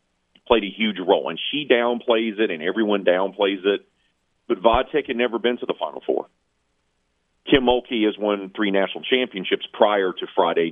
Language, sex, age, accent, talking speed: English, male, 40-59, American, 175 wpm